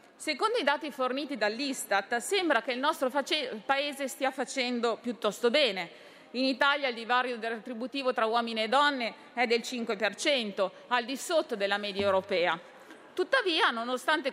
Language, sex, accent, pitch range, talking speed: Italian, female, native, 225-285 Hz, 140 wpm